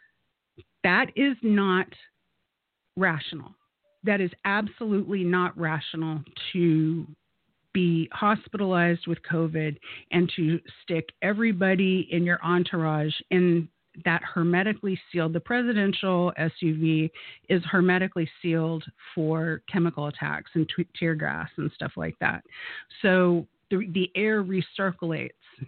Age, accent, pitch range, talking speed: 40-59, American, 165-190 Hz, 105 wpm